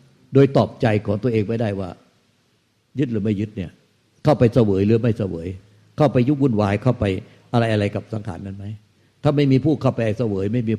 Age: 60-79